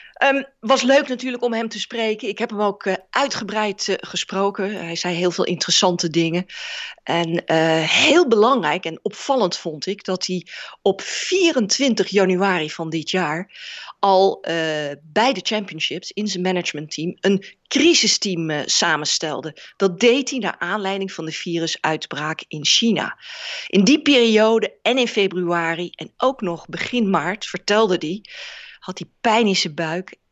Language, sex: Dutch, female